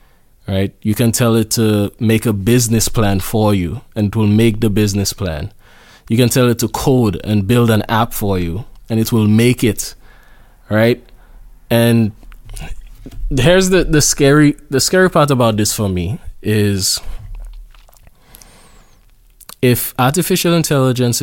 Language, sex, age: English, male, 20-39